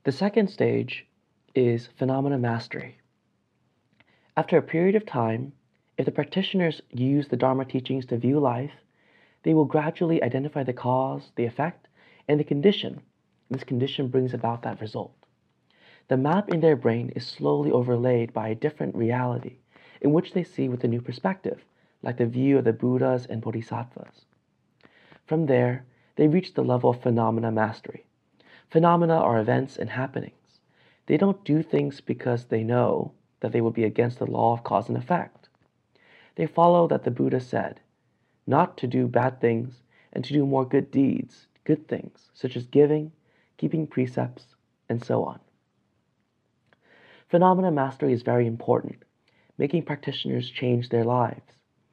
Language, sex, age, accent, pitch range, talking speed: English, male, 30-49, American, 120-150 Hz, 155 wpm